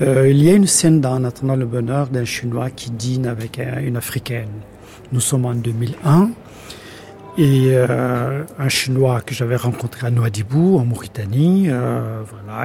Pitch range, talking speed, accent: 115-145 Hz, 170 wpm, French